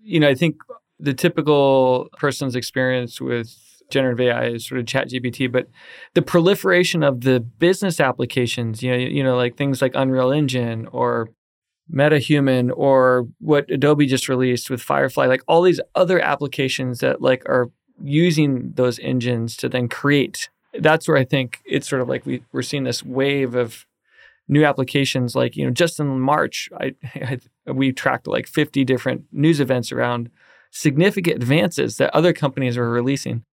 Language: English